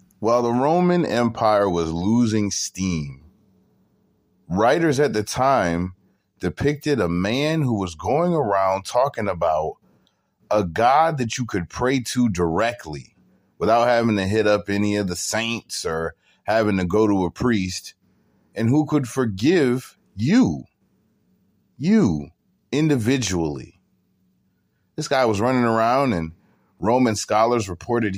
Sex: male